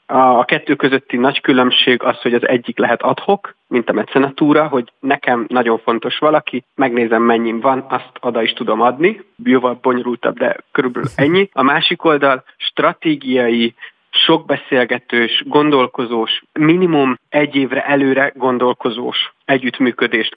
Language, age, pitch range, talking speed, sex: Hungarian, 30-49, 125-150 Hz, 135 wpm, male